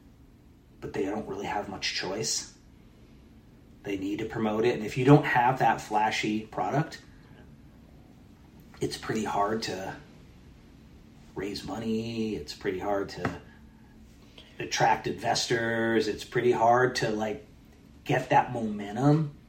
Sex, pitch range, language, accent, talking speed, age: male, 110-135 Hz, English, American, 125 wpm, 30-49